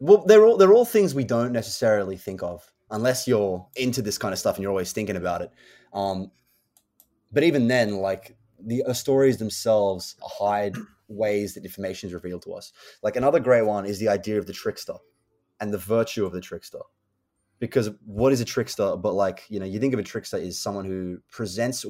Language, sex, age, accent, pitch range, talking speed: English, male, 20-39, Australian, 90-105 Hz, 205 wpm